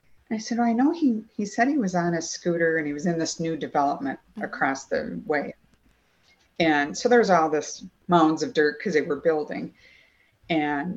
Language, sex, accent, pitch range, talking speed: English, female, American, 155-215 Hz, 190 wpm